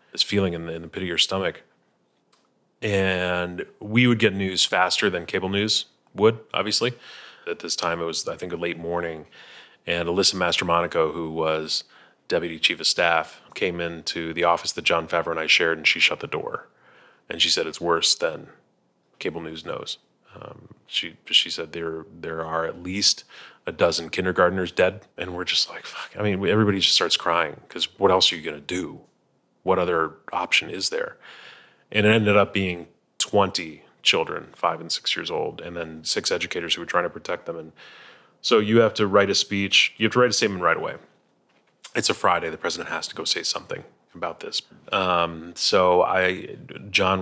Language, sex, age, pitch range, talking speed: English, male, 30-49, 85-100 Hz, 195 wpm